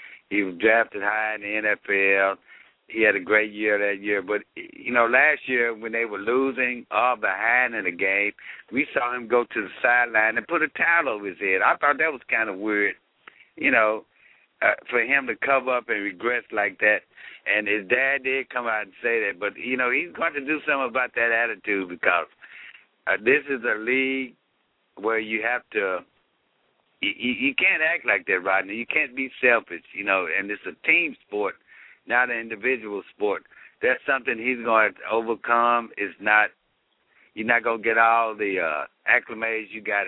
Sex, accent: male, American